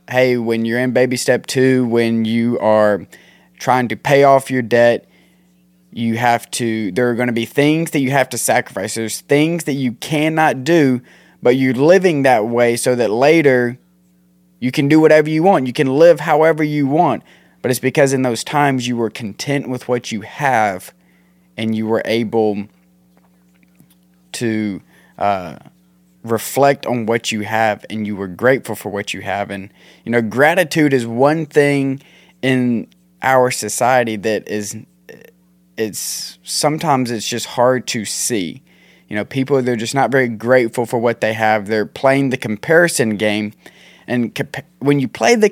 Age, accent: 20-39, American